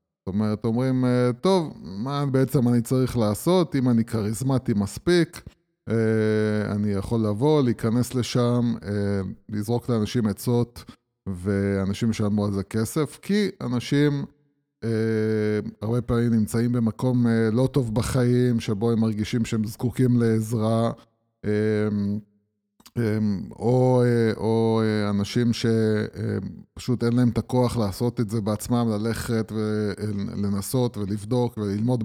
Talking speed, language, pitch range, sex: 110 wpm, Hebrew, 110-130 Hz, male